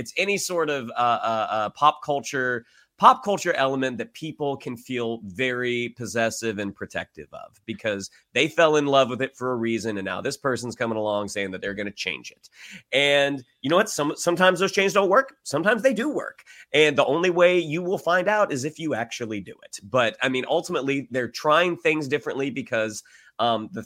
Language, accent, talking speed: English, American, 210 wpm